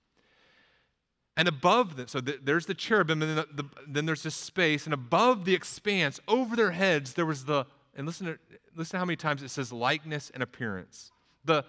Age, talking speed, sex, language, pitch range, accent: 30-49, 200 wpm, male, English, 135-170 Hz, American